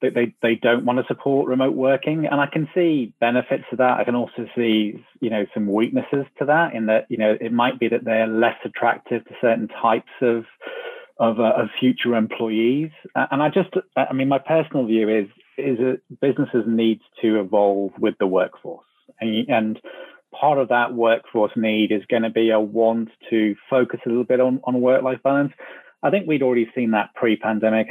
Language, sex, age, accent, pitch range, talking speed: English, male, 30-49, British, 110-130 Hz, 200 wpm